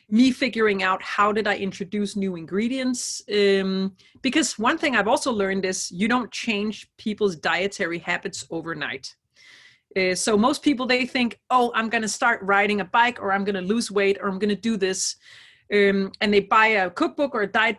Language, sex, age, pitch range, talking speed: English, female, 30-49, 195-235 Hz, 190 wpm